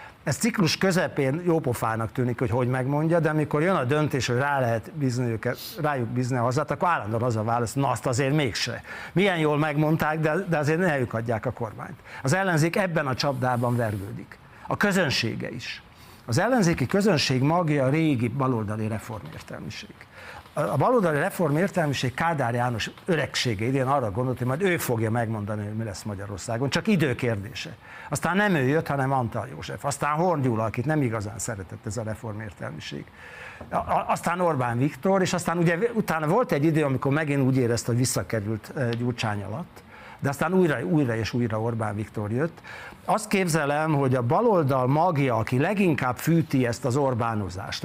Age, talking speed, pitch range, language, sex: 60-79, 165 wpm, 115-155 Hz, Hungarian, male